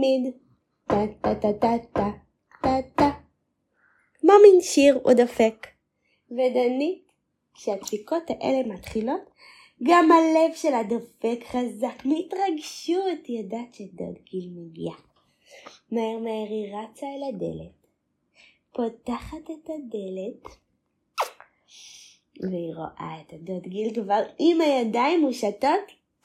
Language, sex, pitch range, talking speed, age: Hebrew, female, 205-290 Hz, 85 wpm, 20-39